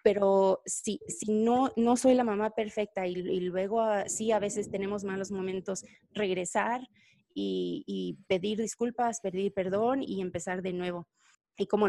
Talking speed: 160 wpm